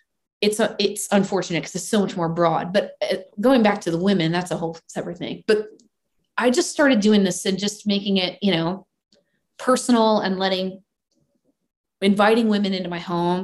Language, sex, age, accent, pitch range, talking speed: English, female, 20-39, American, 180-225 Hz, 185 wpm